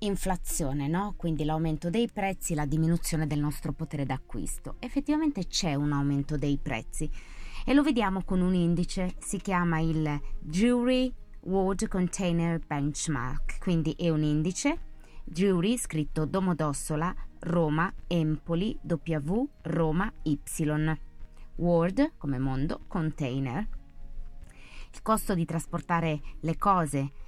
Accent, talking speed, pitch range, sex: native, 115 wpm, 145-175 Hz, female